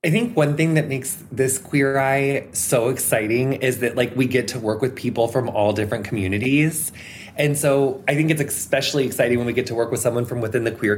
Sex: male